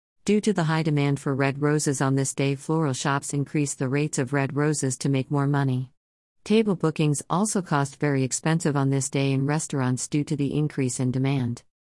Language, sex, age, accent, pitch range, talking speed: English, female, 50-69, American, 135-155 Hz, 200 wpm